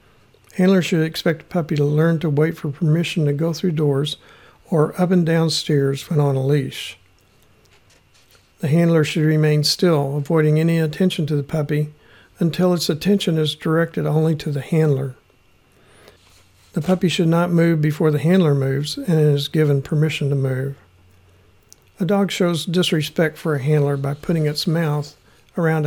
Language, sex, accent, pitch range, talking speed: English, male, American, 140-165 Hz, 165 wpm